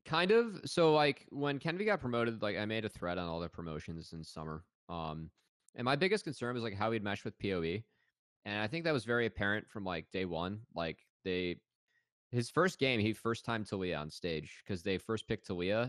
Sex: male